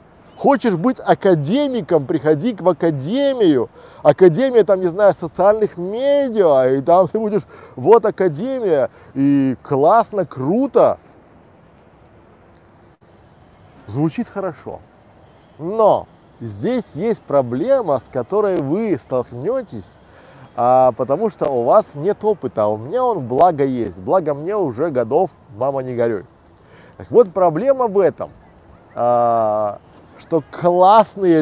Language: Russian